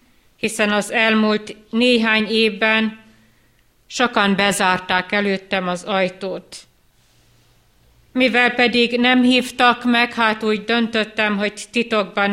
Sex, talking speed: female, 95 wpm